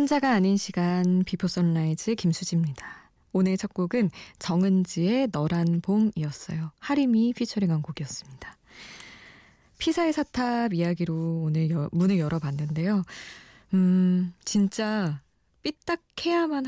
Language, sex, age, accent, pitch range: Korean, female, 20-39, native, 155-215 Hz